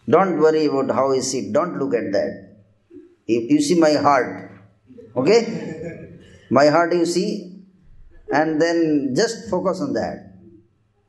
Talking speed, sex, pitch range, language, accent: 145 wpm, male, 100-170 Hz, Hindi, native